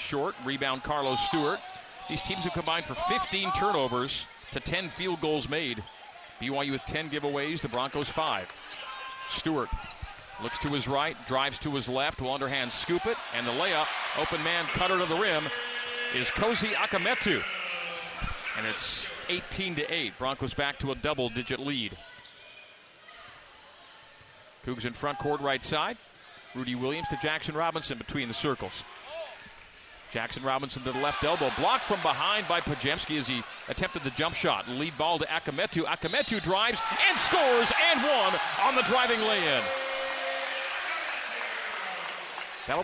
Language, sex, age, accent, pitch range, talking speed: English, male, 40-59, American, 140-185 Hz, 150 wpm